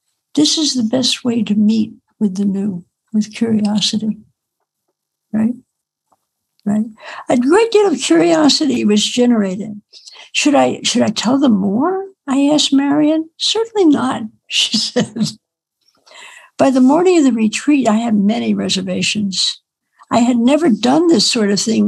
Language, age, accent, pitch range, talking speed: English, 60-79, American, 215-285 Hz, 145 wpm